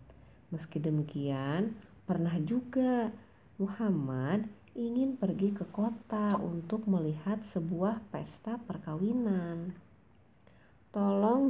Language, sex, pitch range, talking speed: Indonesian, female, 170-250 Hz, 80 wpm